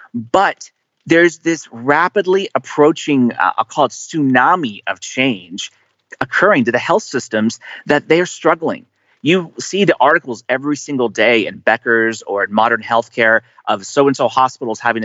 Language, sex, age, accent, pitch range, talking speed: English, male, 30-49, American, 115-150 Hz, 150 wpm